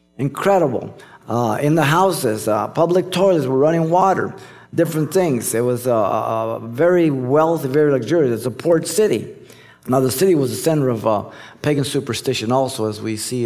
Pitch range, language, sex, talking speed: 130-160 Hz, English, male, 175 wpm